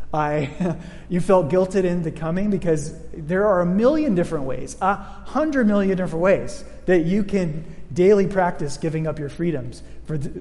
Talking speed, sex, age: 175 wpm, male, 30-49